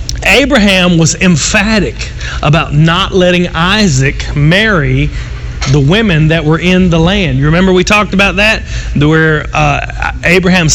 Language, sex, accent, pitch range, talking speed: English, male, American, 145-195 Hz, 135 wpm